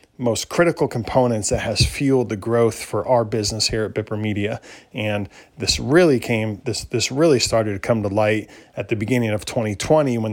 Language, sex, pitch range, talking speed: English, male, 105-125 Hz, 200 wpm